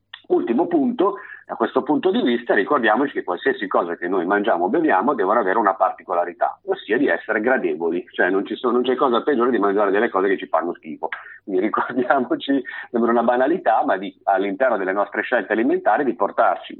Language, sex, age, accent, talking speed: Italian, male, 50-69, native, 195 wpm